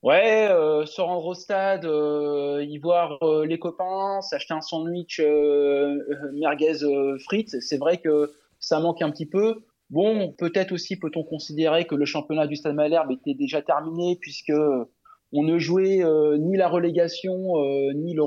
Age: 20-39